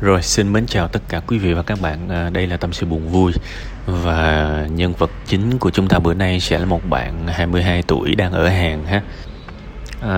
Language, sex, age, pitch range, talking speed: Vietnamese, male, 20-39, 80-100 Hz, 225 wpm